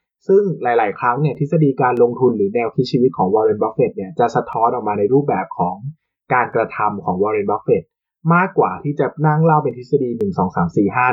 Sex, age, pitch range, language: male, 20-39, 125-165 Hz, Thai